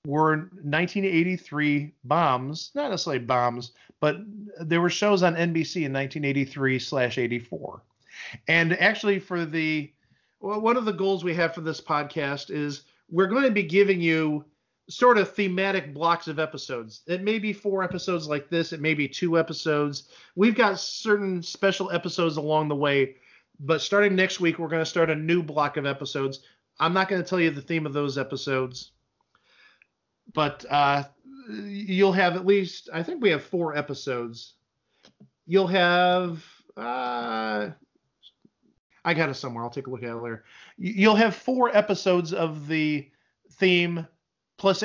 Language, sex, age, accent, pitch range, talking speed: English, male, 40-59, American, 145-185 Hz, 160 wpm